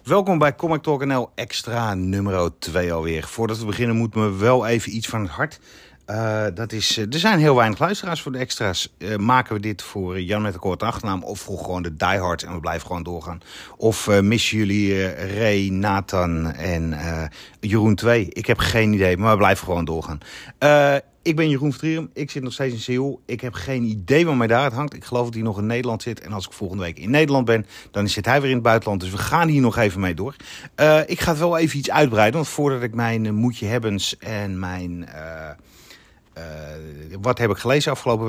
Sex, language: male, Dutch